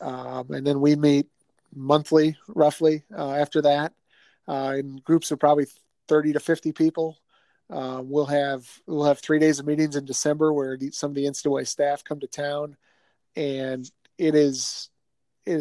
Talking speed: 170 wpm